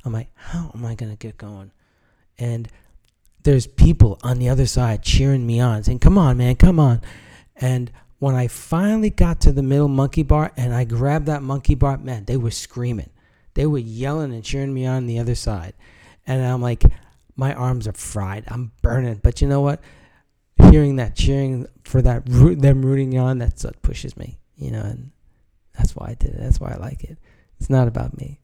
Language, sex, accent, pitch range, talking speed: English, male, American, 95-130 Hz, 205 wpm